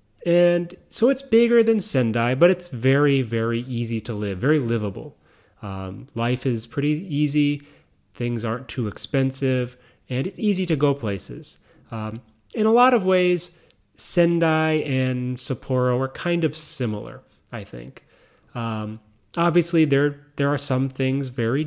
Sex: male